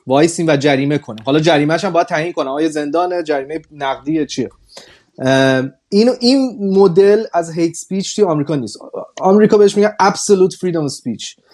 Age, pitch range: 30-49, 140-195 Hz